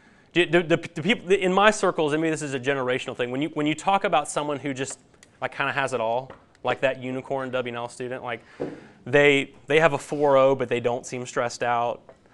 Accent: American